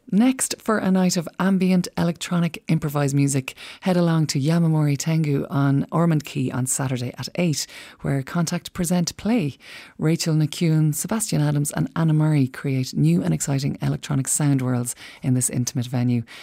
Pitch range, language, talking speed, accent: 130-165 Hz, English, 155 wpm, Irish